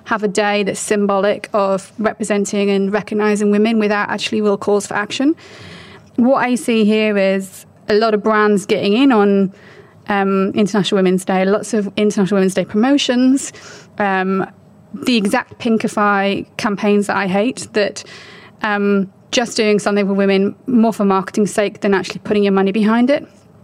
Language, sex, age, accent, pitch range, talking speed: English, female, 30-49, British, 200-225 Hz, 160 wpm